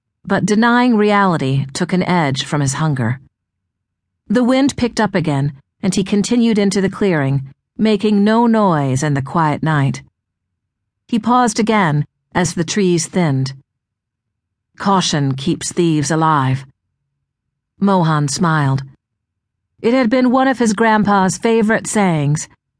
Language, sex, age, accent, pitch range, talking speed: English, female, 50-69, American, 135-200 Hz, 130 wpm